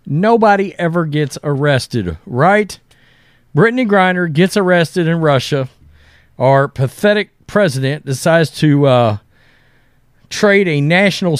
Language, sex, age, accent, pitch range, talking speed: English, male, 40-59, American, 125-175 Hz, 105 wpm